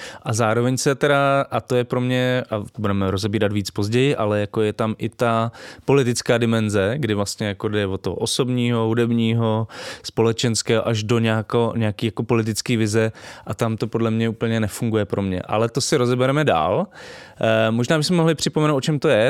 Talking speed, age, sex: 185 wpm, 20-39, male